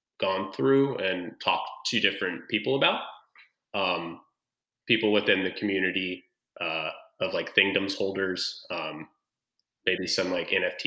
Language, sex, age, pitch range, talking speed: English, male, 20-39, 100-135 Hz, 125 wpm